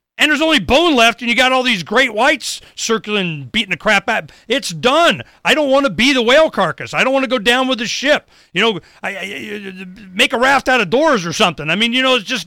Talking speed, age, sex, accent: 245 wpm, 40-59, male, American